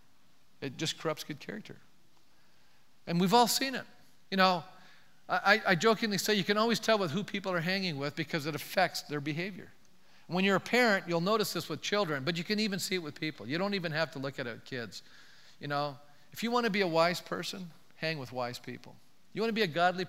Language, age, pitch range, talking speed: English, 50-69, 145-195 Hz, 235 wpm